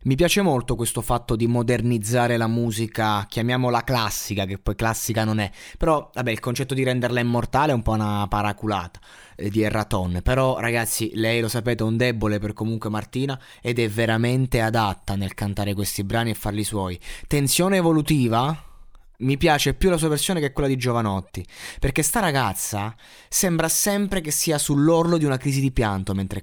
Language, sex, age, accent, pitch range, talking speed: Italian, male, 20-39, native, 110-135 Hz, 180 wpm